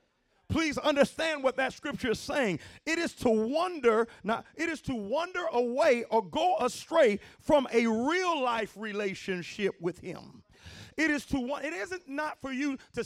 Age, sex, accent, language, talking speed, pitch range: 40-59, male, American, English, 165 wpm, 225-290 Hz